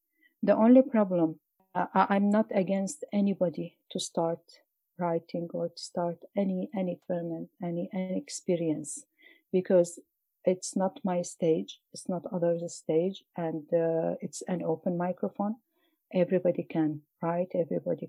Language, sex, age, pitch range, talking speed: English, female, 50-69, 165-200 Hz, 130 wpm